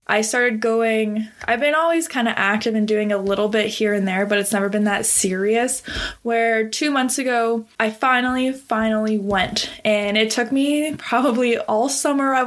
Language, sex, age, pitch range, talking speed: English, female, 20-39, 210-235 Hz, 190 wpm